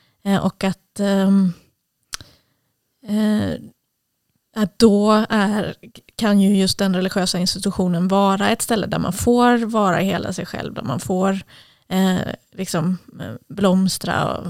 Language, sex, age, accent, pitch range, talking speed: Swedish, female, 20-39, native, 185-210 Hz, 115 wpm